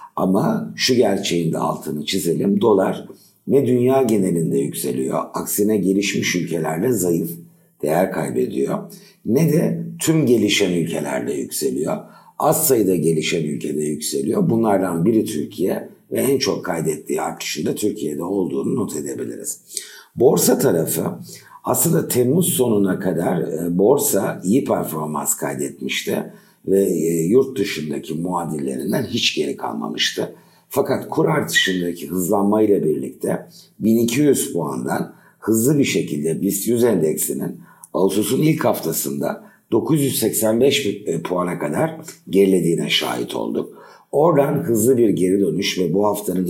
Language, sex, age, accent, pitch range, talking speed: Turkish, male, 60-79, native, 80-125 Hz, 115 wpm